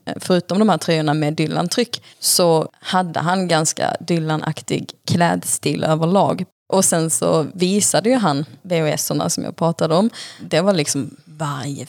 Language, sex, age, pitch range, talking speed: Swedish, female, 20-39, 155-185 Hz, 140 wpm